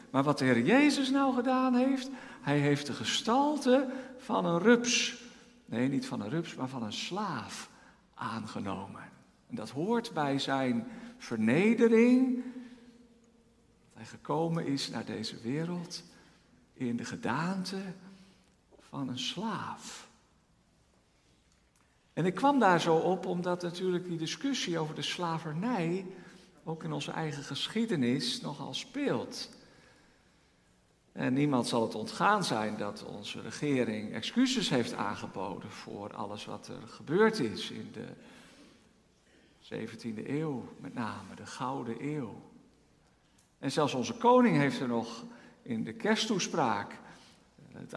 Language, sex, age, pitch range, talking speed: Dutch, male, 60-79, 145-240 Hz, 130 wpm